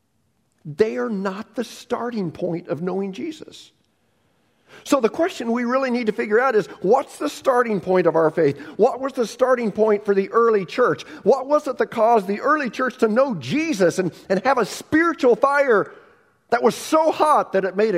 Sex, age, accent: male, 50-69, American